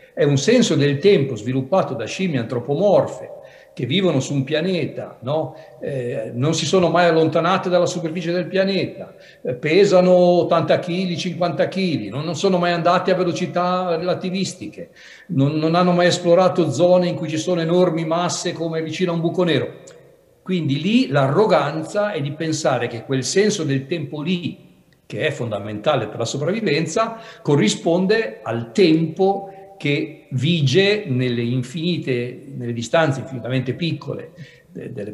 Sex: male